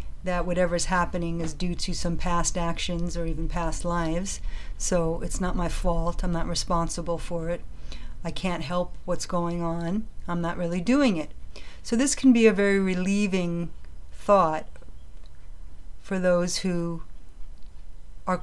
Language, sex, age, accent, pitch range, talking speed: English, female, 50-69, American, 165-190 Hz, 150 wpm